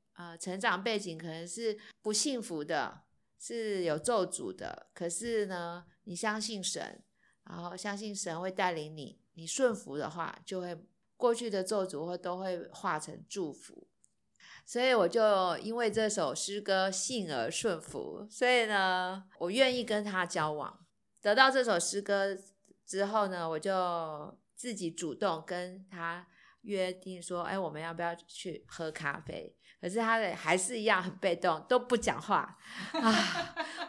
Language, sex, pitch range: Chinese, female, 175-215 Hz